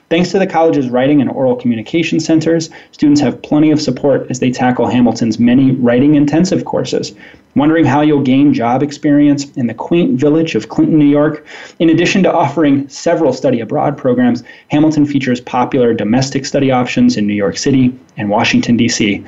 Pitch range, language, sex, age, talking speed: 130-170 Hz, English, male, 20-39, 175 wpm